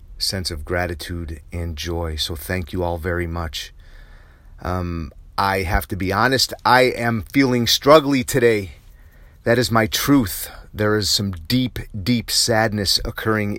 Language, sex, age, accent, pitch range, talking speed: English, male, 30-49, American, 85-110 Hz, 145 wpm